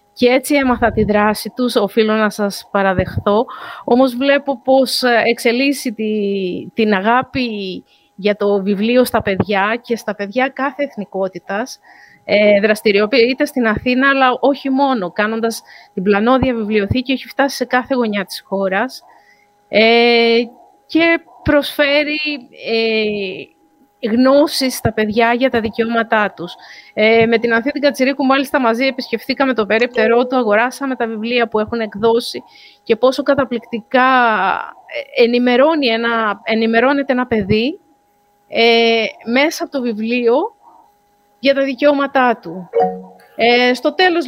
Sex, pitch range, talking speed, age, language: female, 215-265 Hz, 120 wpm, 30-49, Greek